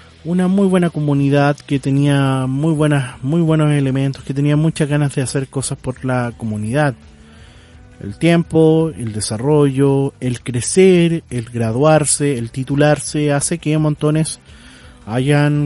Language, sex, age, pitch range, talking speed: Spanish, male, 30-49, 125-150 Hz, 135 wpm